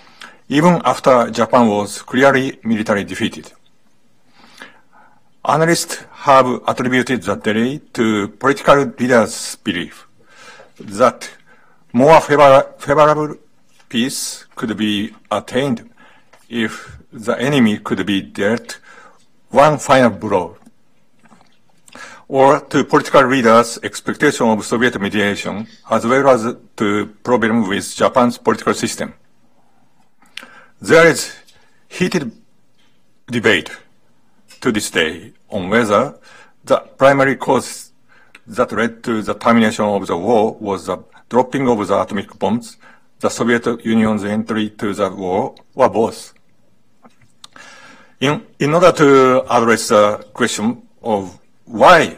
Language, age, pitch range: English, 50-69, 105-135 Hz